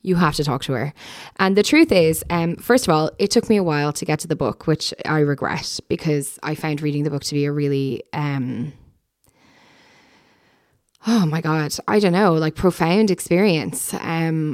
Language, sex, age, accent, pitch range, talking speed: English, female, 10-29, Irish, 150-185 Hz, 200 wpm